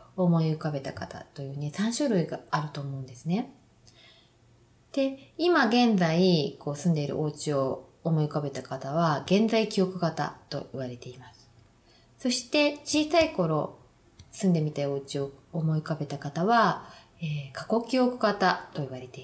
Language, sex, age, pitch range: Japanese, female, 20-39, 140-210 Hz